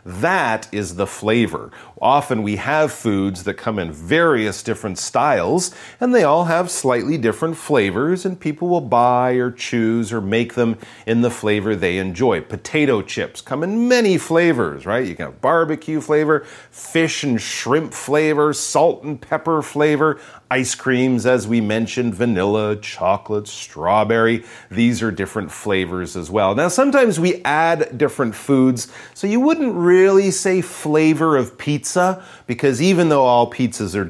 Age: 40-59